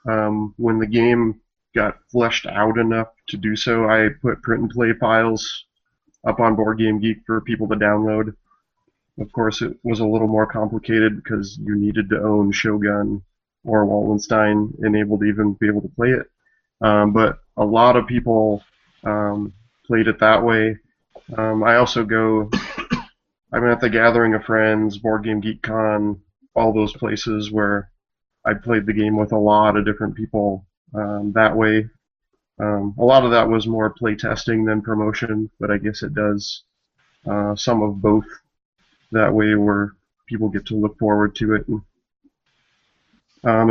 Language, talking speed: English, 165 wpm